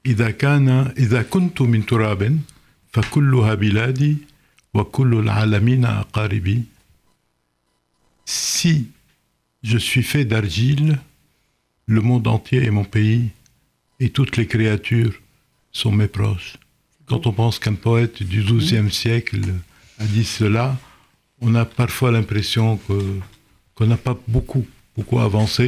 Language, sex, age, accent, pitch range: French, male, 60-79, French, 105-130 Hz